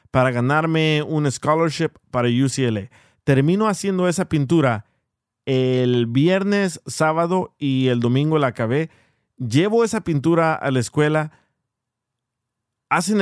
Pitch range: 125-170 Hz